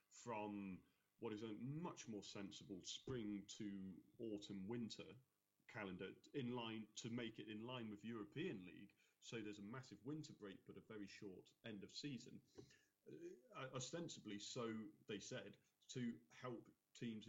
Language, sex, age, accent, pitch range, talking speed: English, male, 30-49, British, 100-120 Hz, 150 wpm